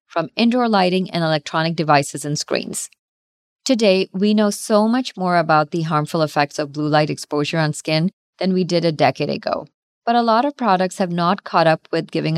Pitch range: 160-205 Hz